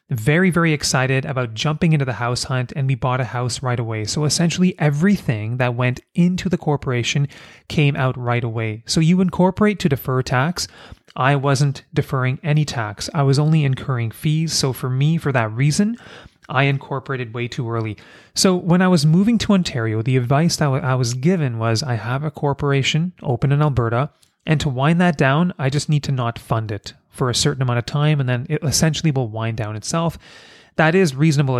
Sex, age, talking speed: male, 30-49, 200 wpm